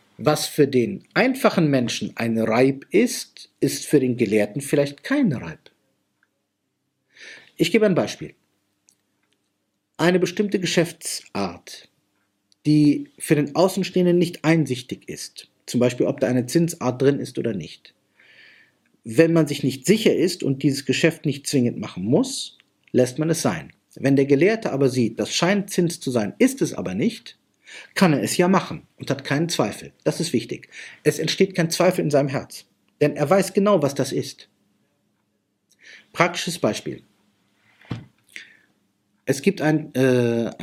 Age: 50-69